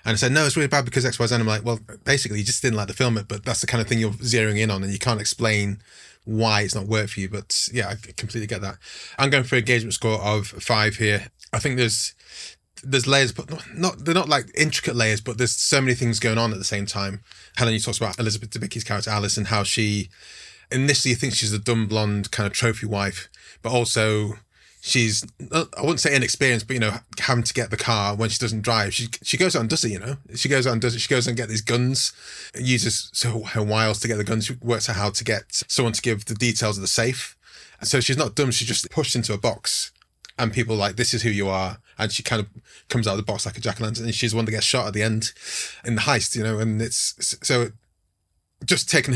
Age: 30-49